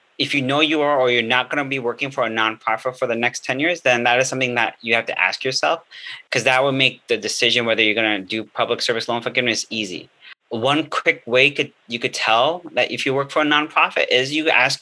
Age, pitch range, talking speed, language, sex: 30-49, 110-130 Hz, 250 wpm, English, male